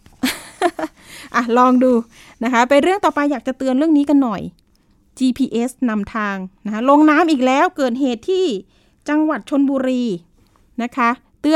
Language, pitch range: Thai, 225-280 Hz